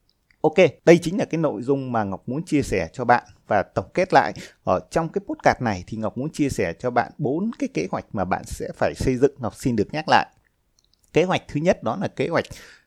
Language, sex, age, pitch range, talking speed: Vietnamese, male, 20-39, 115-155 Hz, 245 wpm